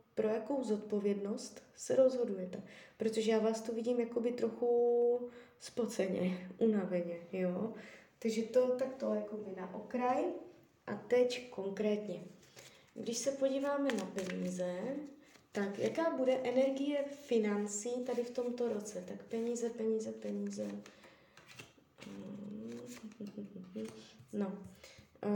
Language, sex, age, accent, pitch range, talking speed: Czech, female, 20-39, native, 205-245 Hz, 100 wpm